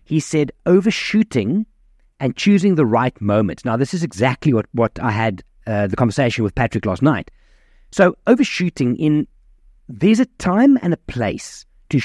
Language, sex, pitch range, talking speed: English, male, 115-155 Hz, 165 wpm